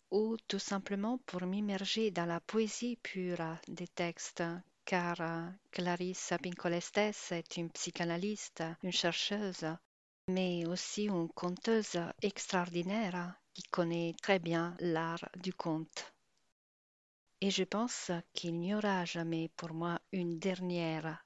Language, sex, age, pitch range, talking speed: French, female, 50-69, 175-205 Hz, 120 wpm